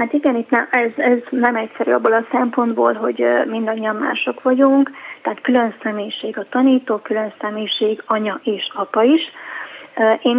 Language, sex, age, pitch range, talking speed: Hungarian, female, 20-39, 210-245 Hz, 155 wpm